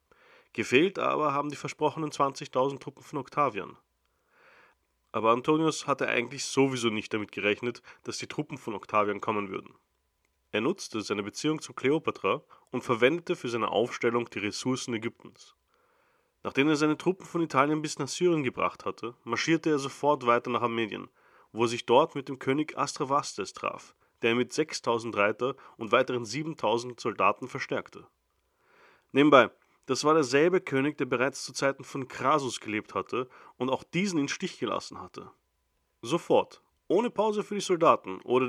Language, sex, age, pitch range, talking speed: German, male, 30-49, 120-160 Hz, 155 wpm